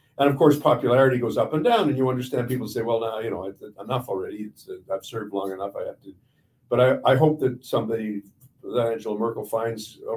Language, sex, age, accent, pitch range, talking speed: English, male, 50-69, American, 100-130 Hz, 210 wpm